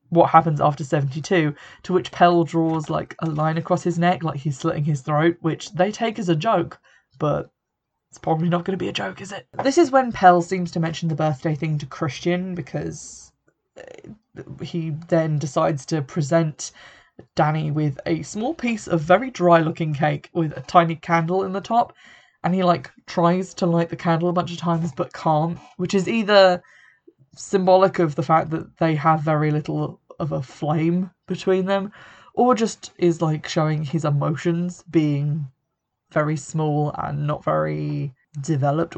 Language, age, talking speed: English, 20-39, 180 wpm